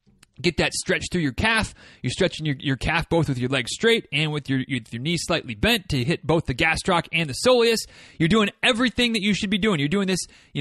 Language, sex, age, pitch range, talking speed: English, male, 30-49, 145-210 Hz, 250 wpm